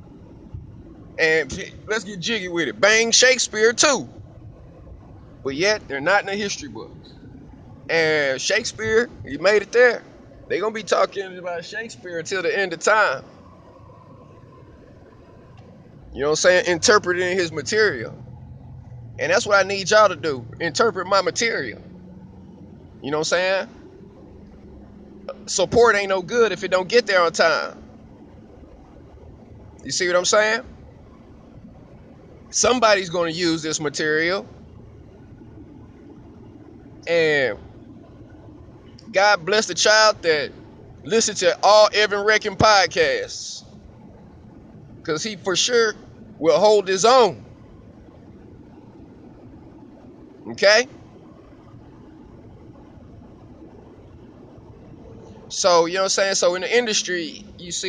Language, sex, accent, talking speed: English, male, American, 120 wpm